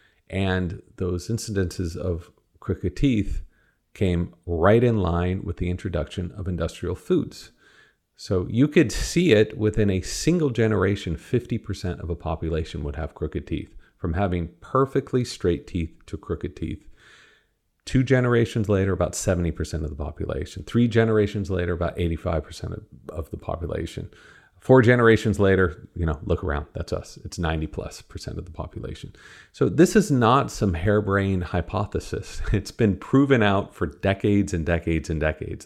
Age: 40-59